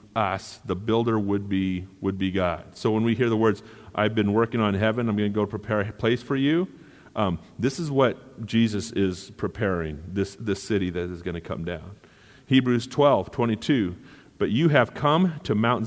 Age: 40-59